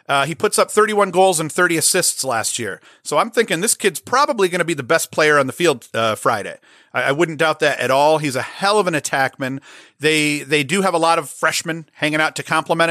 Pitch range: 135-170 Hz